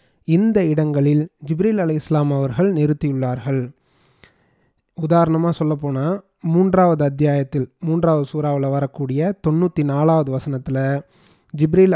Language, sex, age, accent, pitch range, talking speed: Tamil, male, 30-49, native, 145-170 Hz, 90 wpm